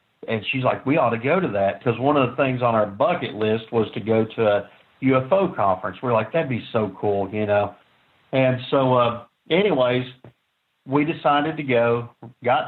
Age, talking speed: 50-69, 200 wpm